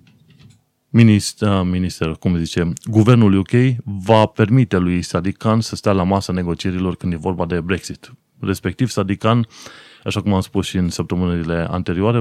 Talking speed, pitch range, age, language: 145 wpm, 90-115 Hz, 30-49, Romanian